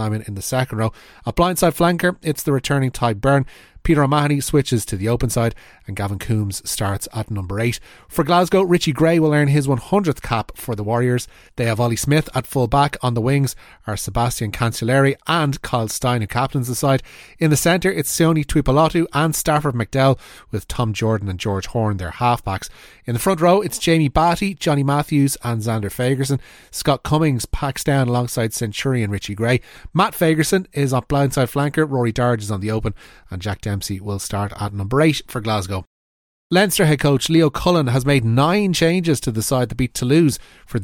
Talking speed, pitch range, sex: 200 wpm, 110-150 Hz, male